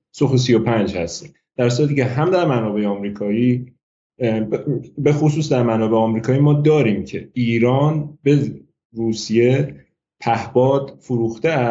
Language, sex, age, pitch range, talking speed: Persian, male, 30-49, 110-145 Hz, 115 wpm